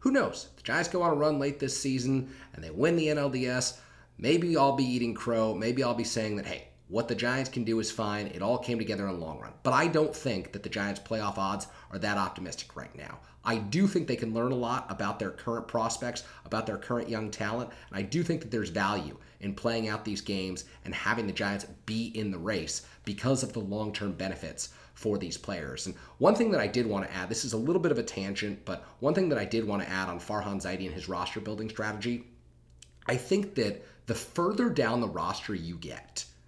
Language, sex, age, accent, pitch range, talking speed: English, male, 30-49, American, 95-135 Hz, 240 wpm